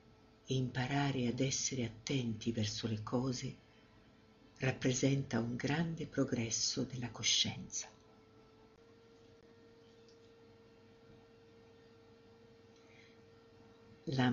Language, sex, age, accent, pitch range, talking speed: Italian, female, 50-69, native, 115-135 Hz, 65 wpm